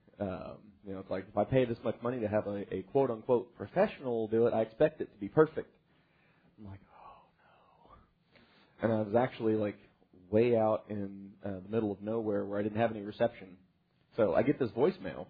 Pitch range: 100-120 Hz